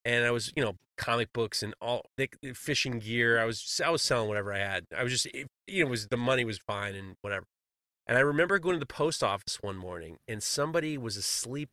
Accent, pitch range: American, 115-175 Hz